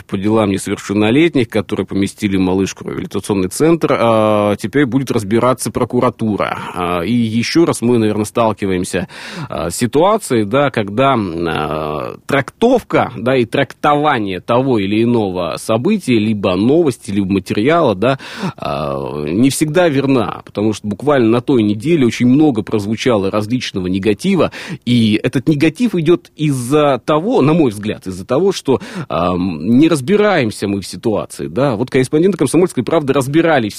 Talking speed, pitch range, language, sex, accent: 130 wpm, 105-145 Hz, Russian, male, native